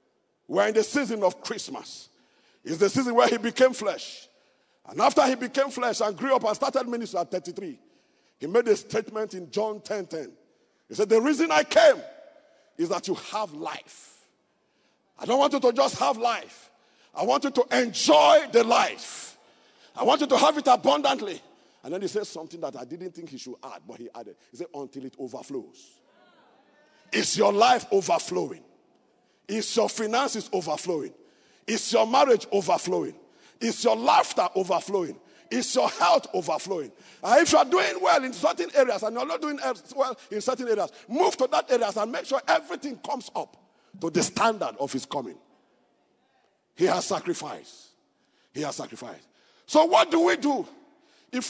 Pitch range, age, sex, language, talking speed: 210-300 Hz, 50-69, male, English, 175 wpm